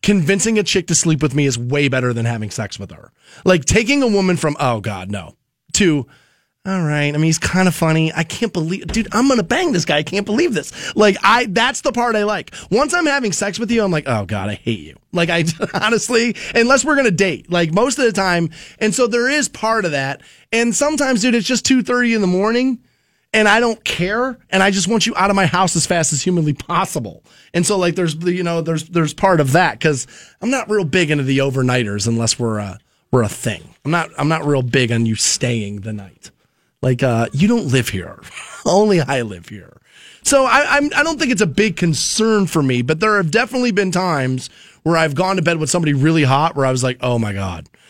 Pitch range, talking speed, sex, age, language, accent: 135-210 Hz, 245 wpm, male, 20-39, English, American